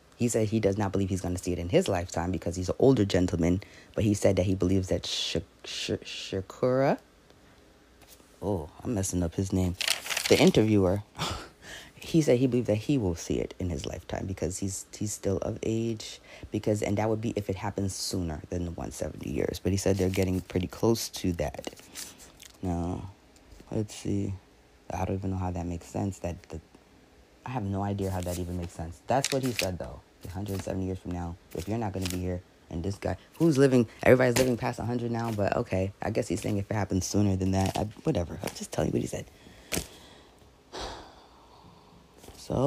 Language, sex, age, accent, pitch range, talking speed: English, female, 20-39, American, 90-110 Hz, 210 wpm